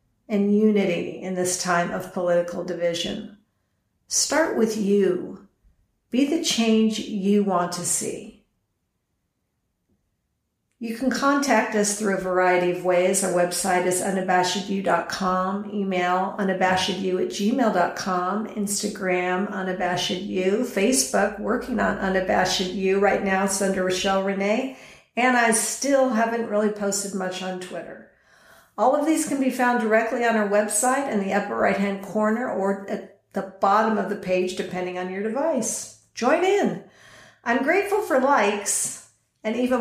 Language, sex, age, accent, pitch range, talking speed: English, female, 50-69, American, 185-225 Hz, 135 wpm